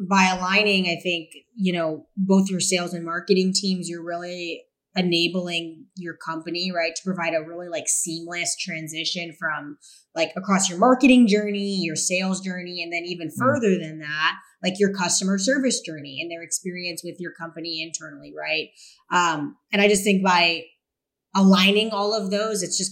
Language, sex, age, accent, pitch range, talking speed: English, female, 20-39, American, 160-190 Hz, 170 wpm